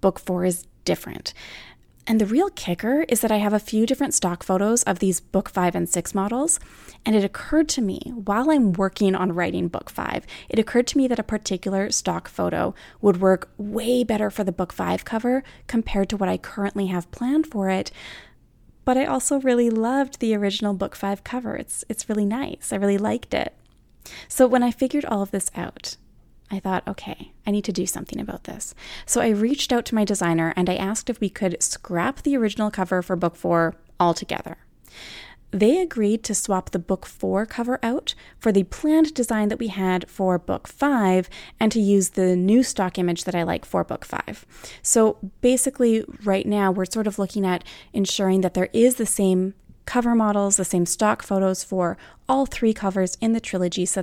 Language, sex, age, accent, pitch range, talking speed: English, female, 20-39, American, 185-230 Hz, 200 wpm